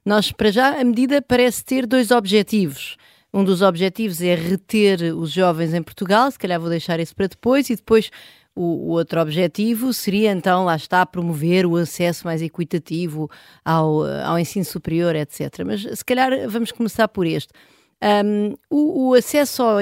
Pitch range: 190-250 Hz